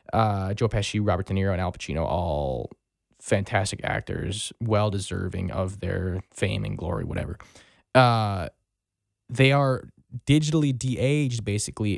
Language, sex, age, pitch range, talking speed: English, male, 20-39, 100-125 Hz, 125 wpm